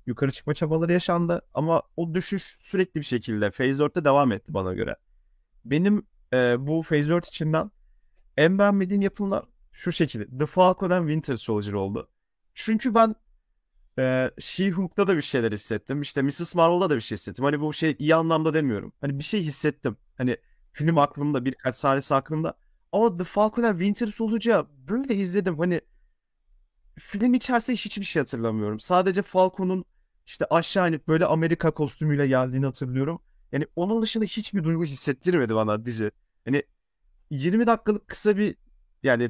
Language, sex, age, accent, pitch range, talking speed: Turkish, male, 30-49, native, 125-180 Hz, 155 wpm